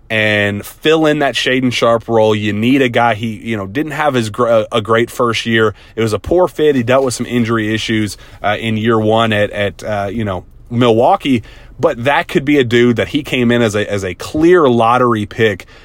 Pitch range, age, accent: 105-125 Hz, 30-49, American